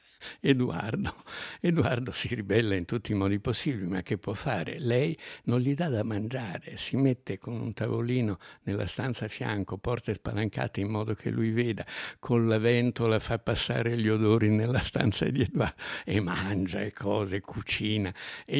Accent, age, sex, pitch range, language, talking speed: native, 60-79, male, 100-125 Hz, Italian, 170 wpm